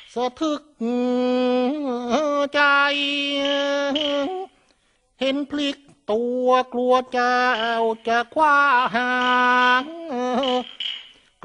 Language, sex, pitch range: Thai, male, 230-285 Hz